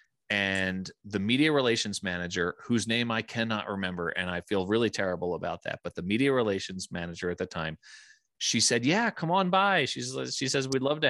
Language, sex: English, male